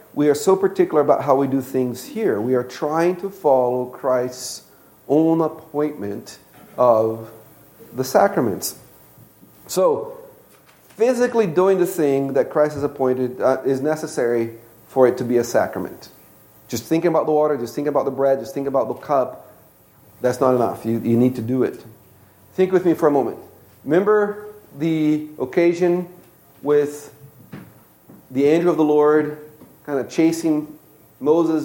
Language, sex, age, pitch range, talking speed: English, male, 40-59, 130-175 Hz, 155 wpm